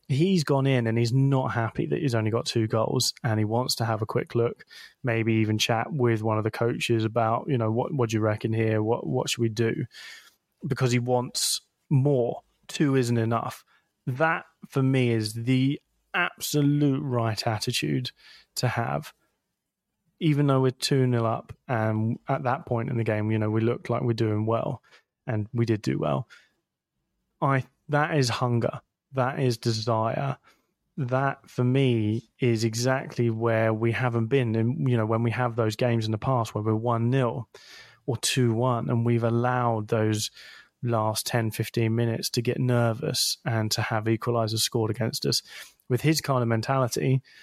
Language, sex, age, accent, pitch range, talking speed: English, male, 20-39, British, 115-130 Hz, 180 wpm